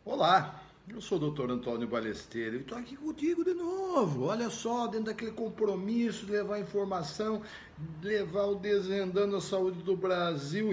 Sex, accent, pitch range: male, Brazilian, 145-245 Hz